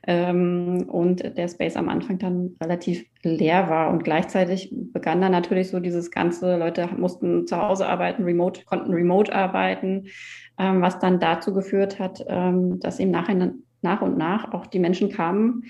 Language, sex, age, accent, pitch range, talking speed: German, female, 30-49, German, 180-210 Hz, 170 wpm